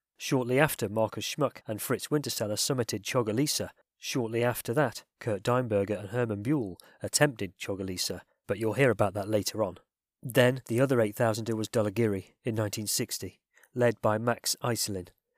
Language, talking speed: English, 150 wpm